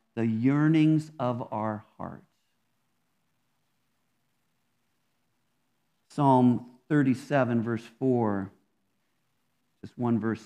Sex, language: male, English